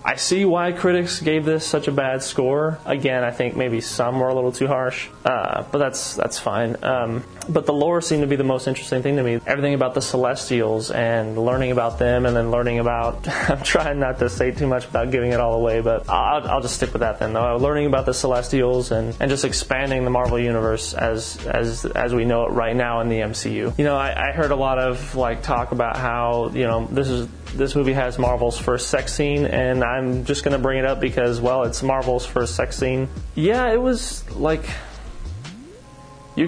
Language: English